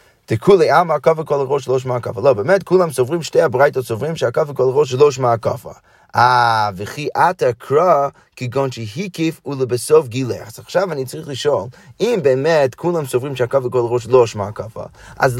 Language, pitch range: Hebrew, 130-190 Hz